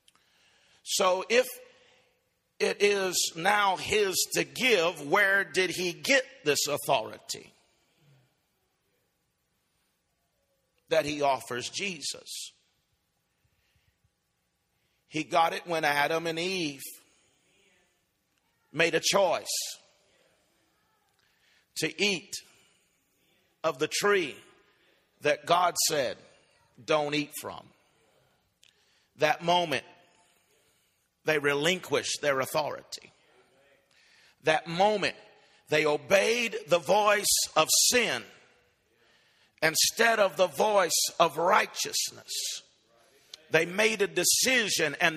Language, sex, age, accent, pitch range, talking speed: English, male, 50-69, American, 155-205 Hz, 85 wpm